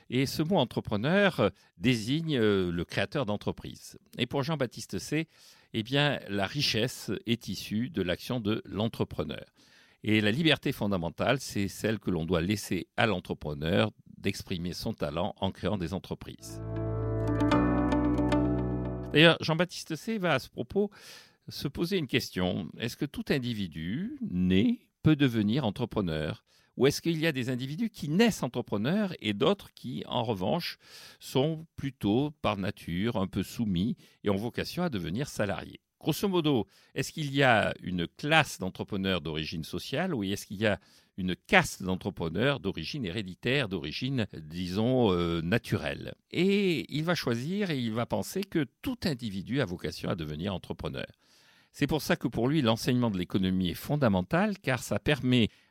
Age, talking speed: 60-79, 150 wpm